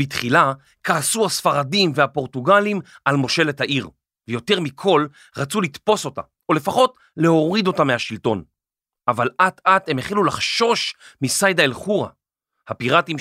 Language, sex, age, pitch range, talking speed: Hebrew, male, 40-59, 135-200 Hz, 120 wpm